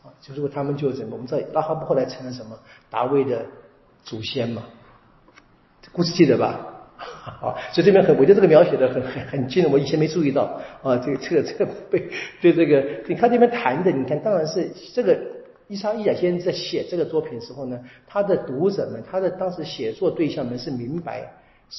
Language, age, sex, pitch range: Chinese, 50-69, male, 125-170 Hz